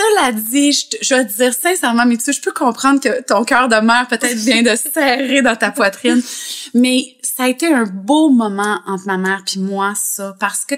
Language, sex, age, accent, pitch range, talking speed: French, female, 30-49, Canadian, 215-305 Hz, 225 wpm